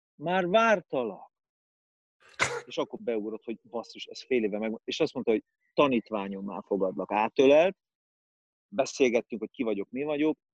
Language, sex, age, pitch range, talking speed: Hungarian, male, 30-49, 105-150 Hz, 140 wpm